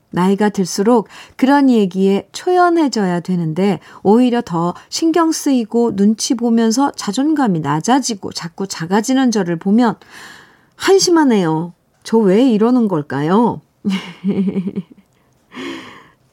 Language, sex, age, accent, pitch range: Korean, female, 50-69, native, 175-245 Hz